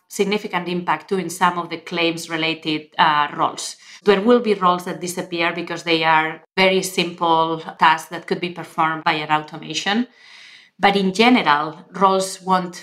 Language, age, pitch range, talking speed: English, 30-49, 165-190 Hz, 160 wpm